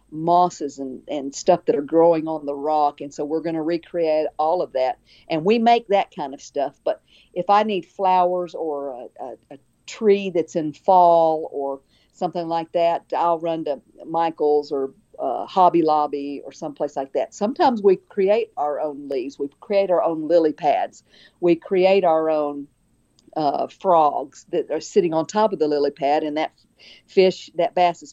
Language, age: English, 50-69